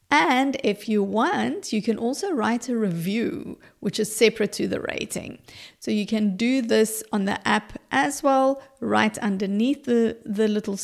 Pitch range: 205-255 Hz